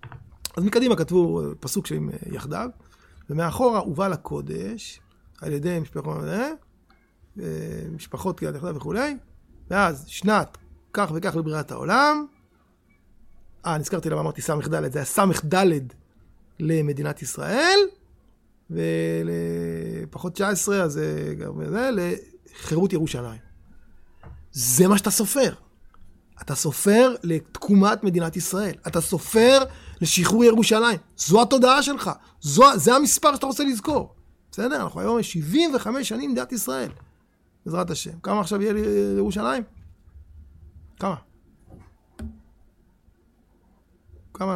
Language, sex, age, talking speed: Hebrew, male, 30-49, 100 wpm